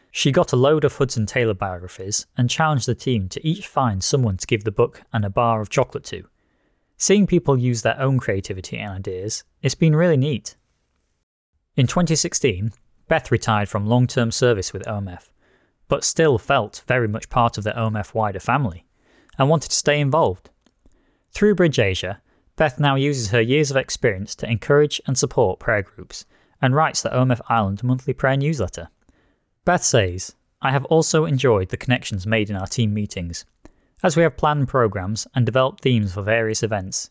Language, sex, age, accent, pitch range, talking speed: English, male, 30-49, British, 105-140 Hz, 180 wpm